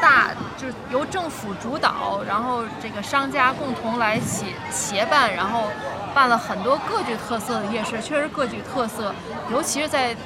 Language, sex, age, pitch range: Chinese, female, 20-39, 220-275 Hz